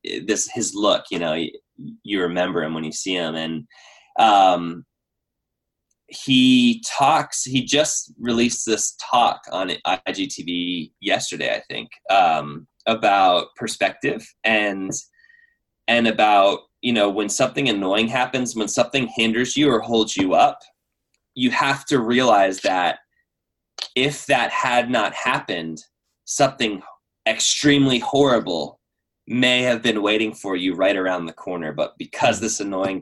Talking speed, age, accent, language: 135 wpm, 20-39, American, English